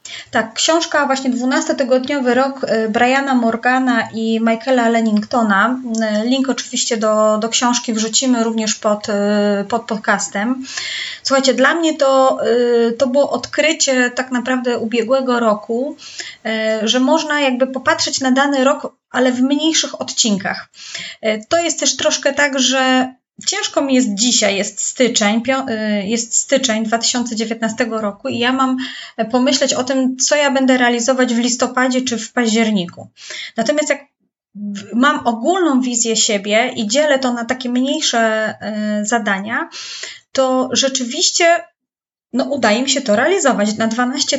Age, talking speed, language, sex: 20-39, 130 wpm, Polish, female